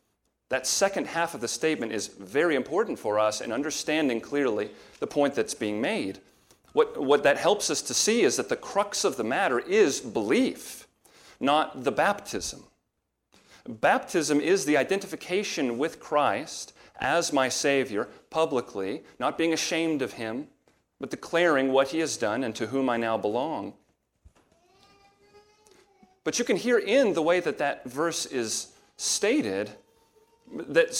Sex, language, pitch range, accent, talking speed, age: male, English, 130-195 Hz, American, 150 wpm, 40-59